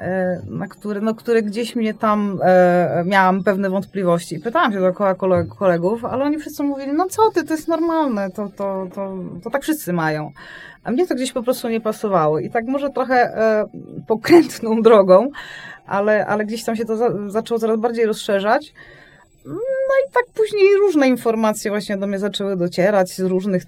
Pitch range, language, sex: 170-220 Hz, Polish, female